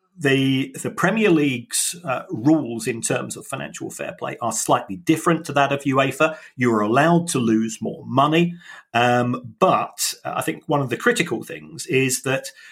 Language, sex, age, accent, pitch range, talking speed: English, male, 40-59, British, 120-155 Hz, 175 wpm